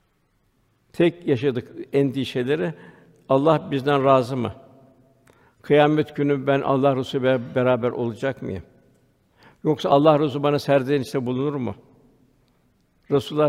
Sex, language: male, Turkish